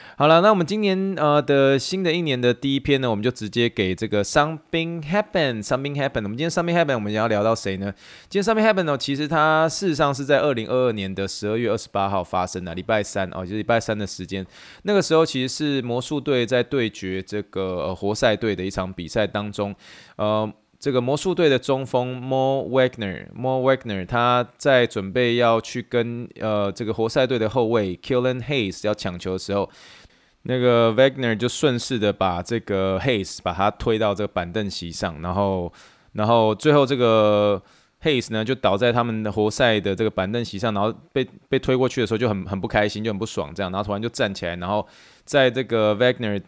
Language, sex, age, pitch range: Chinese, male, 20-39, 100-135 Hz